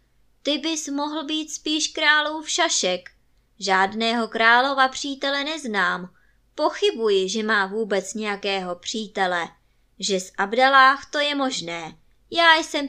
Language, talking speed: Czech, 115 wpm